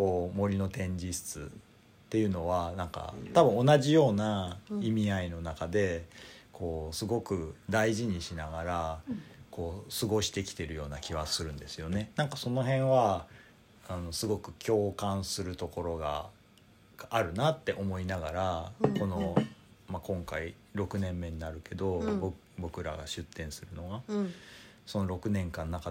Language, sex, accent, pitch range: Japanese, male, native, 85-115 Hz